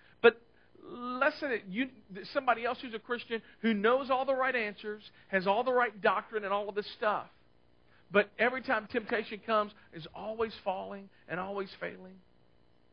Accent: American